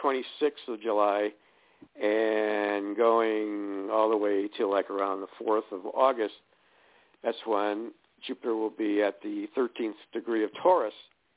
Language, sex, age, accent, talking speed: English, male, 60-79, American, 135 wpm